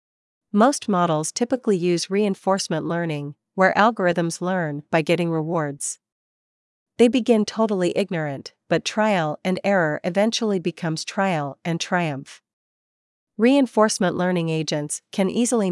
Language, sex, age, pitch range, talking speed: Vietnamese, female, 40-59, 160-205 Hz, 115 wpm